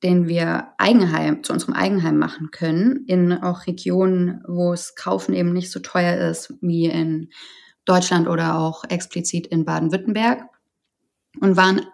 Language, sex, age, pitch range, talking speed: German, female, 20-39, 170-200 Hz, 145 wpm